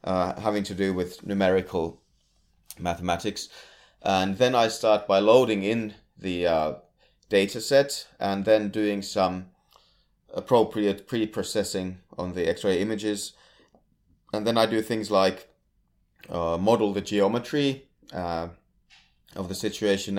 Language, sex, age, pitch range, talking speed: English, male, 30-49, 90-110 Hz, 125 wpm